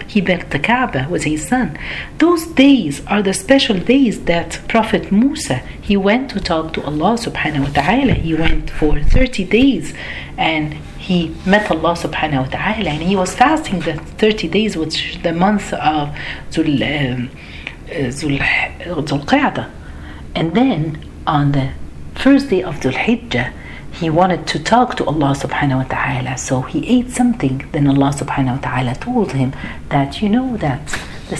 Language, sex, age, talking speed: Arabic, female, 40-59, 165 wpm